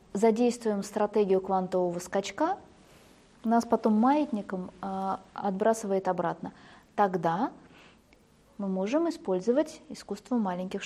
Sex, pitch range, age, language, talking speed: female, 190-250 Hz, 20-39, Russian, 90 wpm